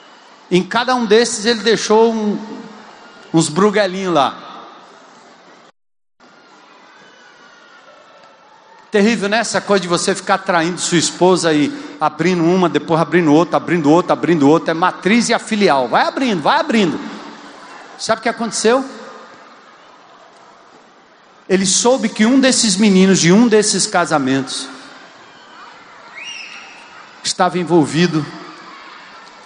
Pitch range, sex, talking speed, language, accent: 170-235 Hz, male, 115 wpm, Portuguese, Brazilian